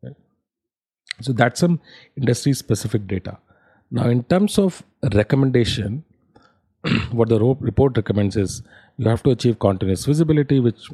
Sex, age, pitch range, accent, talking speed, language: male, 30-49, 100-120 Hz, Indian, 120 wpm, English